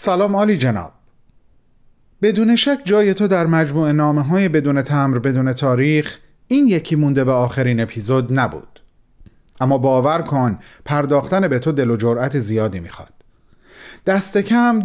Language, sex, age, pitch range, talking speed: Persian, male, 40-59, 125-195 Hz, 140 wpm